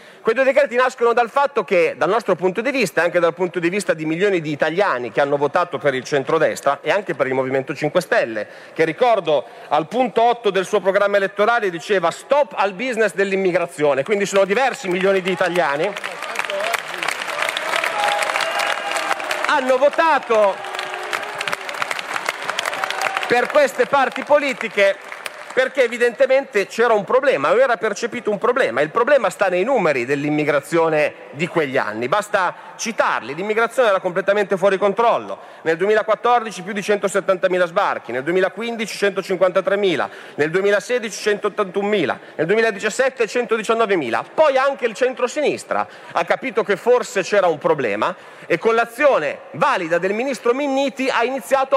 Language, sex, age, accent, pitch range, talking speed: Italian, male, 40-59, native, 185-245 Hz, 140 wpm